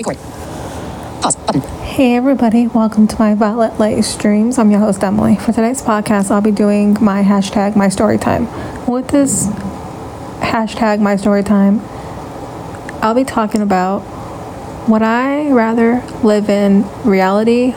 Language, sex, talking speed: English, female, 130 wpm